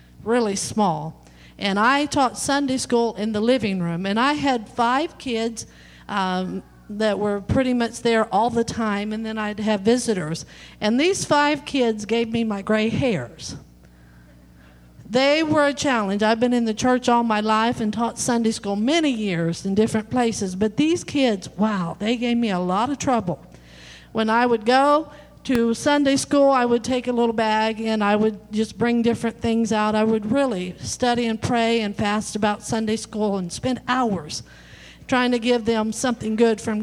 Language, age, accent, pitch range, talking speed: English, 50-69, American, 205-255 Hz, 185 wpm